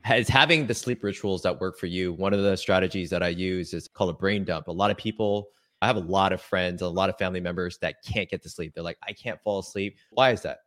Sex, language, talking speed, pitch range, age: male, English, 280 wpm, 95-120 Hz, 20-39